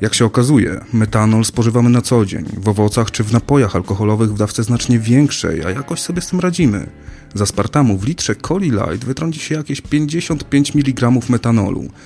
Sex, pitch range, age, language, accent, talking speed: male, 105-145 Hz, 30-49, Polish, native, 180 wpm